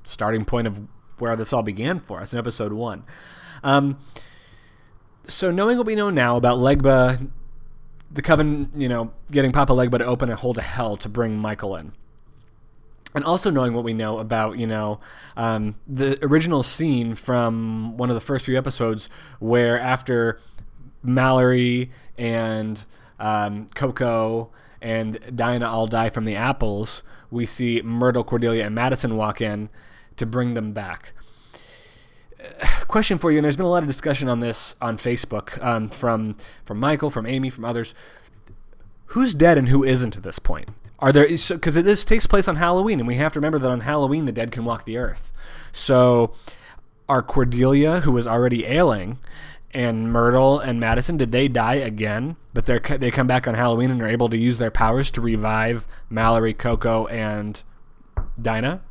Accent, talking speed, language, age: American, 175 wpm, English, 20-39